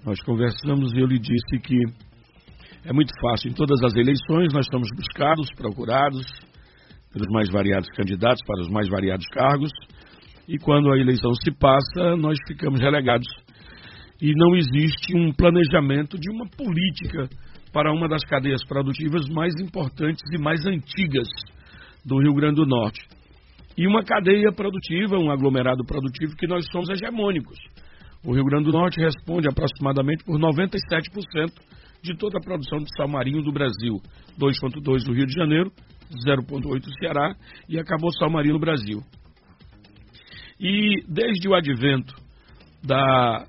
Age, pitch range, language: 60-79, 125-165 Hz, Portuguese